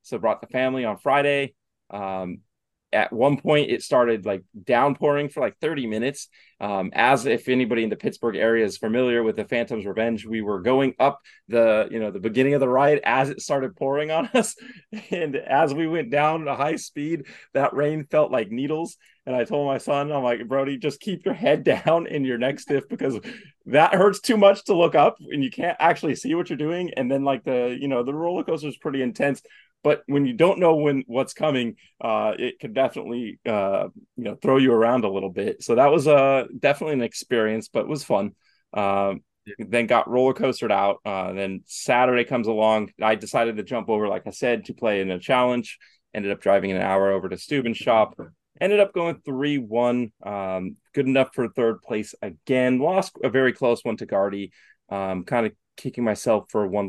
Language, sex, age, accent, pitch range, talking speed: English, male, 30-49, American, 110-145 Hz, 210 wpm